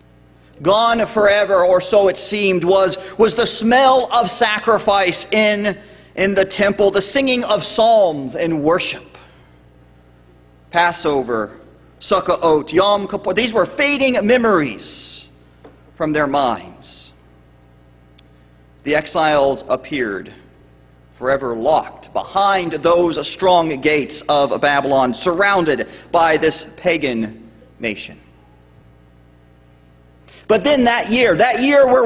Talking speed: 105 wpm